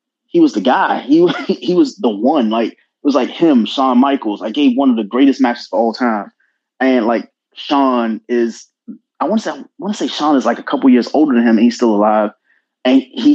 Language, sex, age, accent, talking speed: English, male, 20-39, American, 245 wpm